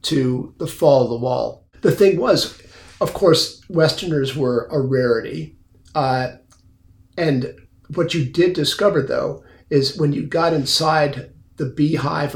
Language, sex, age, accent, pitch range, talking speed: English, male, 50-69, American, 130-155 Hz, 140 wpm